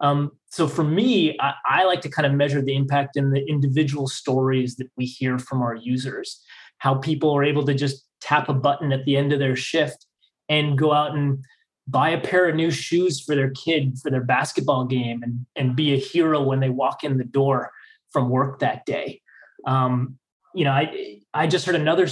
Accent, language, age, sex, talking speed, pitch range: American, English, 20-39, male, 210 wpm, 135-155 Hz